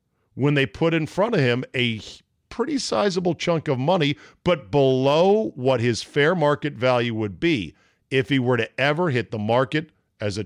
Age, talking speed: 50-69, 185 wpm